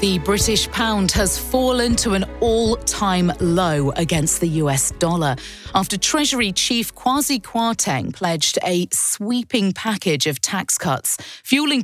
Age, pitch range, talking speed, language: 30-49, 165-225 Hz, 130 wpm, English